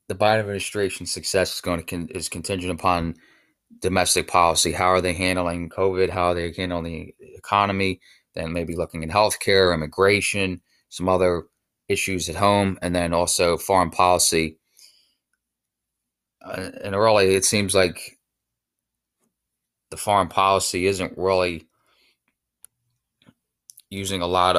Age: 20-39